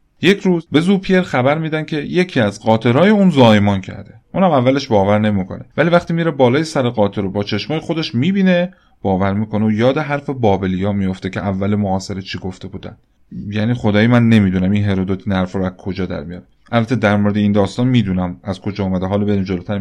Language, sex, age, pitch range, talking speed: Persian, male, 30-49, 105-155 Hz, 195 wpm